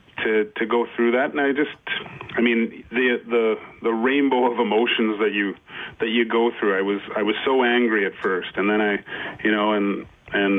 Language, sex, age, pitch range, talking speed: English, male, 30-49, 100-115 Hz, 205 wpm